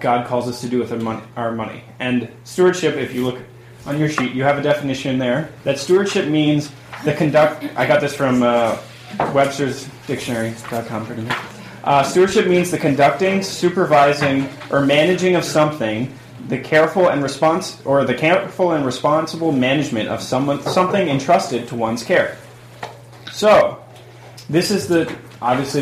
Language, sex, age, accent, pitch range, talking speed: English, male, 20-39, American, 115-145 Hz, 155 wpm